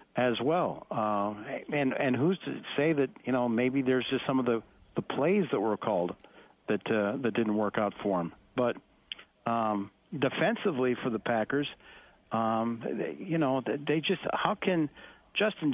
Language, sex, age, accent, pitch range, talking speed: English, male, 60-79, American, 120-155 Hz, 170 wpm